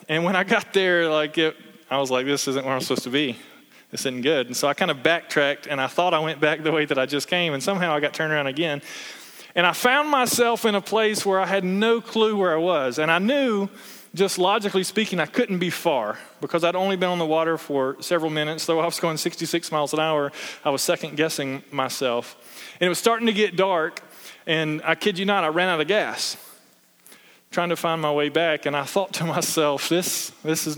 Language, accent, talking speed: English, American, 245 wpm